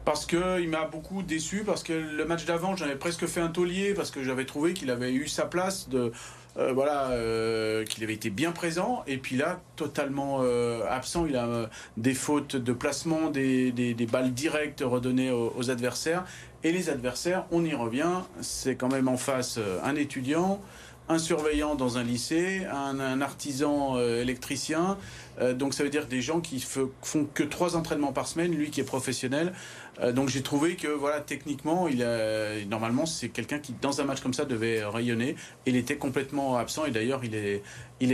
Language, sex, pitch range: French, male, 120-155 Hz